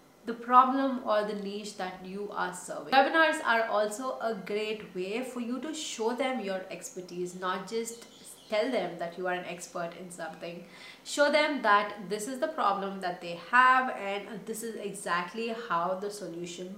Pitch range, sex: 195-250 Hz, female